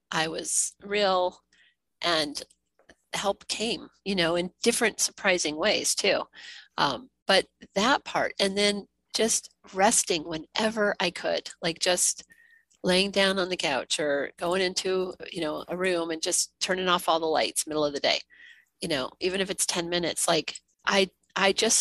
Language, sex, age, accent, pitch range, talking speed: English, female, 40-59, American, 170-210 Hz, 165 wpm